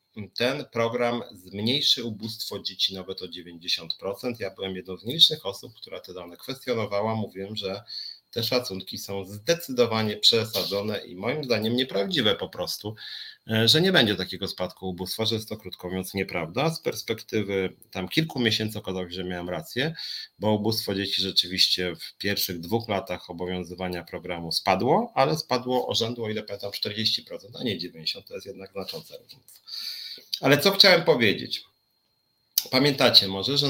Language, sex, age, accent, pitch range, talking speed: Polish, male, 40-59, native, 95-120 Hz, 155 wpm